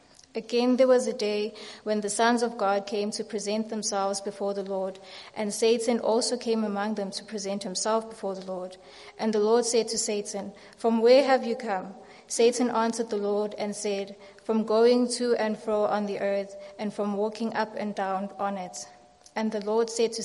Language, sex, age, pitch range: English, female, 20-39, 200-225 Hz